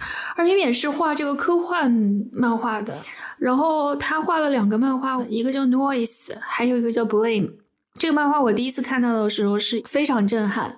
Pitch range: 220-290 Hz